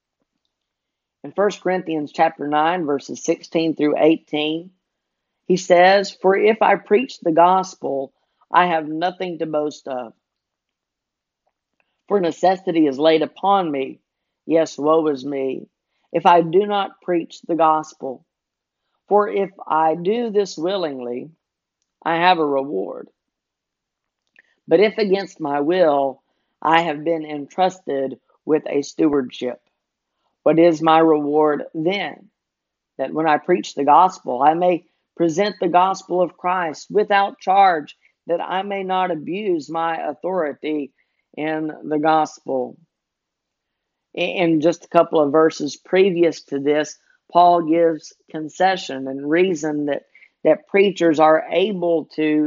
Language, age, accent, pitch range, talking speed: English, 50-69, American, 150-185 Hz, 130 wpm